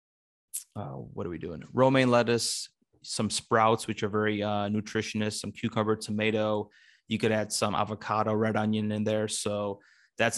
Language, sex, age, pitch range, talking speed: English, male, 20-39, 105-110 Hz, 160 wpm